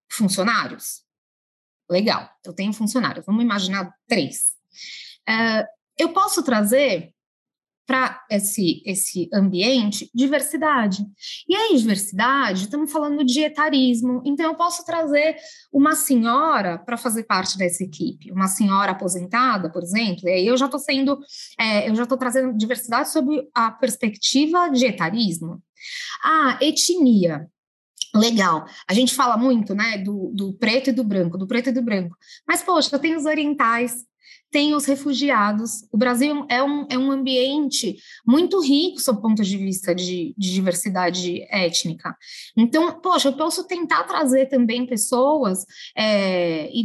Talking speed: 140 wpm